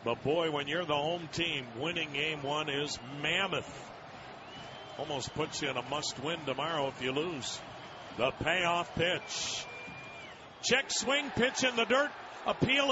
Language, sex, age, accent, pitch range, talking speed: English, male, 50-69, American, 230-335 Hz, 150 wpm